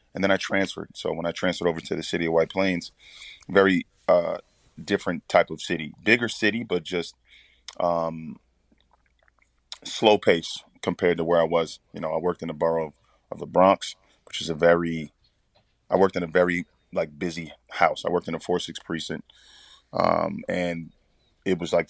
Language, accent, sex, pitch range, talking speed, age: English, American, male, 80-90 Hz, 185 wpm, 30-49